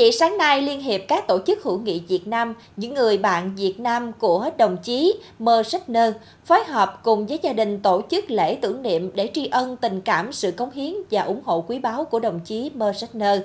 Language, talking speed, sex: Vietnamese, 225 wpm, female